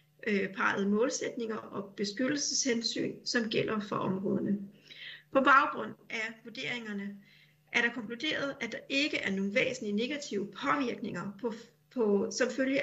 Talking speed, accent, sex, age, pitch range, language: 125 wpm, native, female, 40-59, 200-260 Hz, Danish